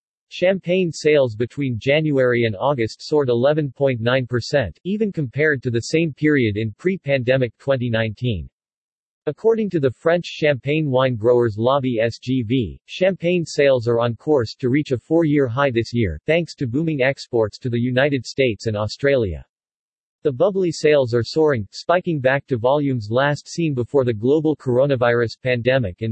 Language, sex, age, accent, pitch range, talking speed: English, male, 40-59, American, 120-150 Hz, 150 wpm